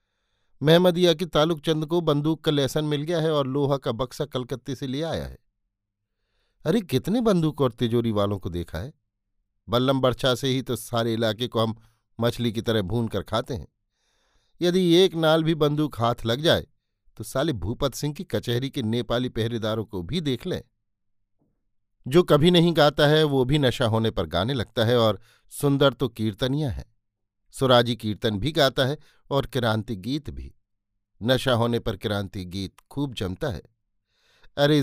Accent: native